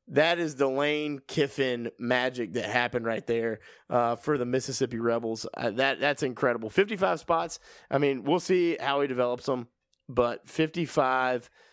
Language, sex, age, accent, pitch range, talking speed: English, male, 20-39, American, 125-165 Hz, 160 wpm